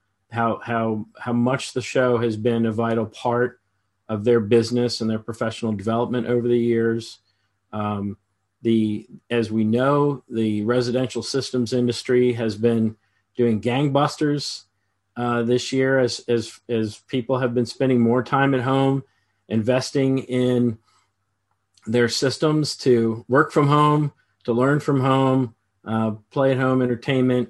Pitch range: 115-135 Hz